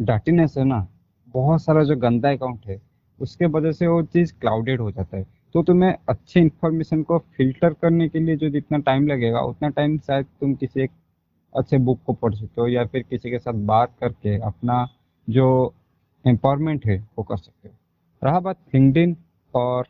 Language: Hindi